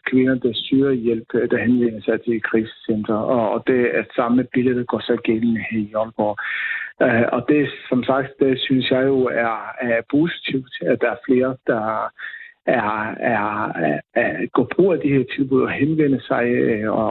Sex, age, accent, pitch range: male, 60-79, native, 115-140 Hz